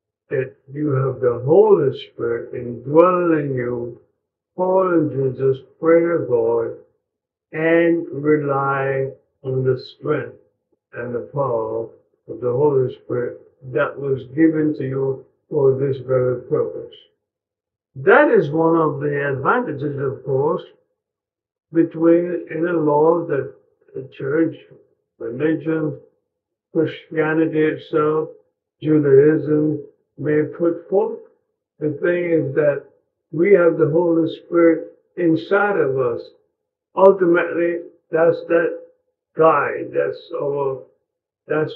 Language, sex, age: English, male, 60-79